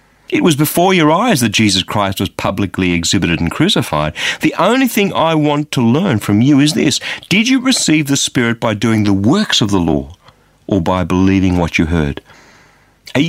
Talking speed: 195 wpm